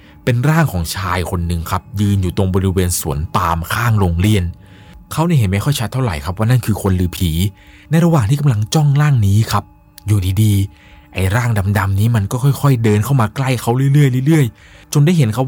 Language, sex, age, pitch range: Thai, male, 20-39, 95-125 Hz